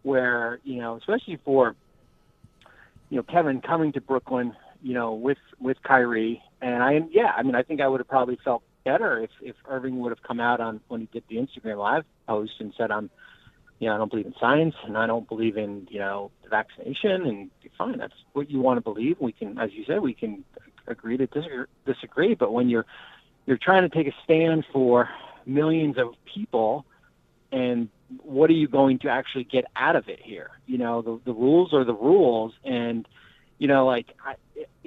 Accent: American